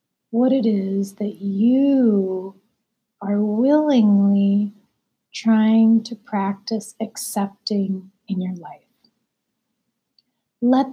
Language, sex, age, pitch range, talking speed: English, female, 30-49, 200-230 Hz, 80 wpm